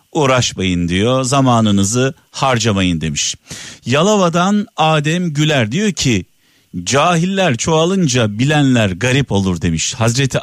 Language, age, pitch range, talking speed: Turkish, 50-69, 105-140 Hz, 100 wpm